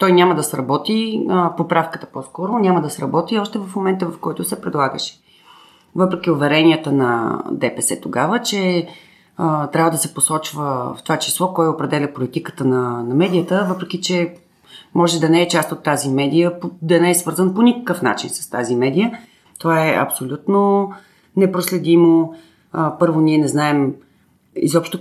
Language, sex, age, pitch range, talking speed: Bulgarian, female, 30-49, 145-180 Hz, 165 wpm